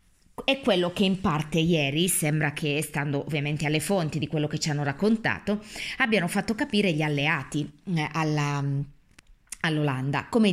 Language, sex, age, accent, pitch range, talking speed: Italian, female, 20-39, native, 150-200 Hz, 150 wpm